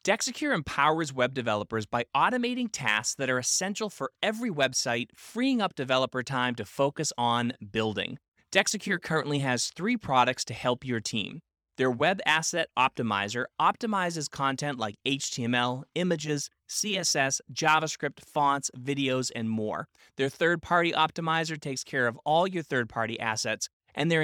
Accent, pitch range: American, 120-170 Hz